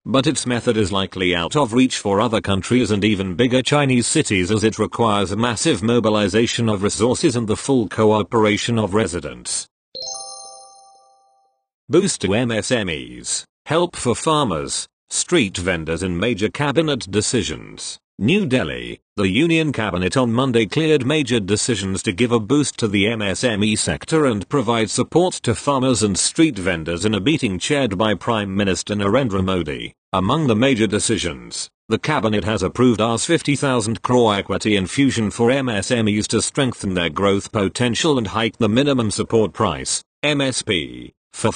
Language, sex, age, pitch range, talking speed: English, male, 40-59, 100-130 Hz, 150 wpm